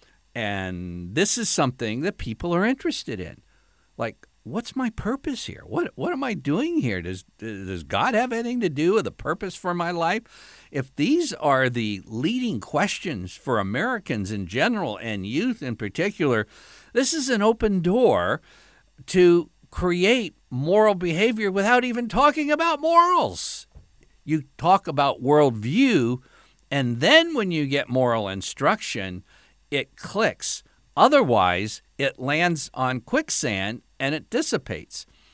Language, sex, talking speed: English, male, 140 wpm